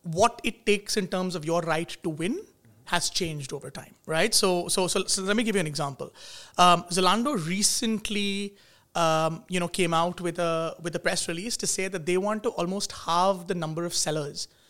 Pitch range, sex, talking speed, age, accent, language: 165-205 Hz, male, 210 wpm, 30-49, Indian, English